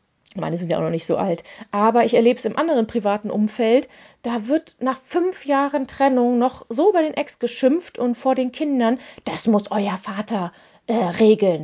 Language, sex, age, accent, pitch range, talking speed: German, female, 30-49, German, 235-290 Hz, 195 wpm